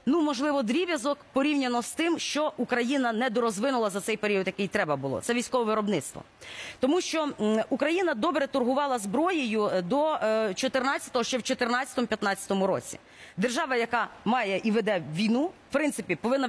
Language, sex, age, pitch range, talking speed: Russian, female, 30-49, 210-275 Hz, 145 wpm